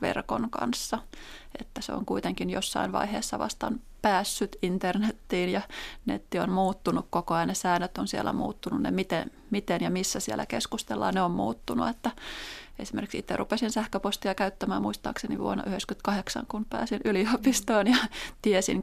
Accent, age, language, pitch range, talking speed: native, 30-49, Finnish, 185-230 Hz, 145 wpm